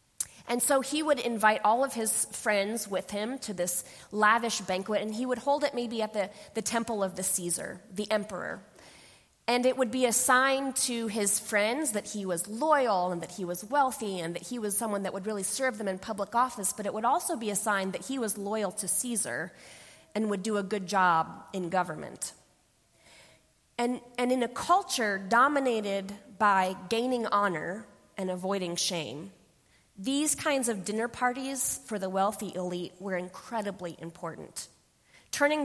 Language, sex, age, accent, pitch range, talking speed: English, female, 20-39, American, 185-235 Hz, 180 wpm